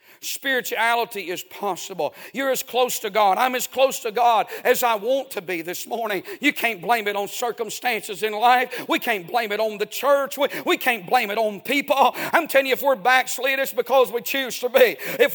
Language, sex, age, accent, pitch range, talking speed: English, male, 50-69, American, 230-290 Hz, 215 wpm